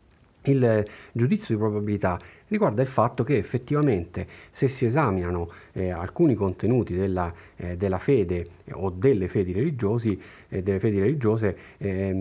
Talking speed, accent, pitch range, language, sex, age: 140 wpm, native, 95-115 Hz, Italian, male, 40-59